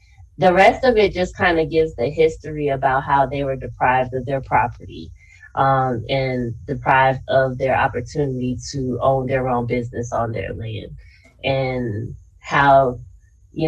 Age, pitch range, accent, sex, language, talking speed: 20-39, 125-160 Hz, American, female, English, 155 wpm